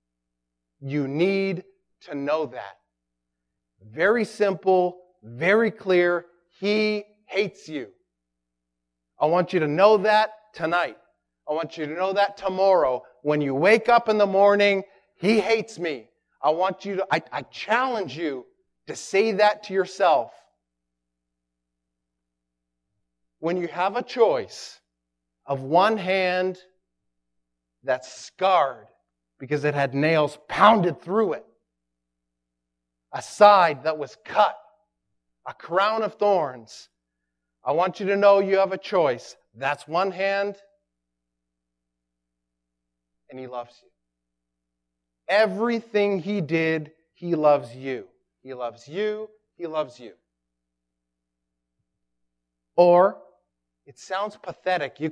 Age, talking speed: 40-59, 120 wpm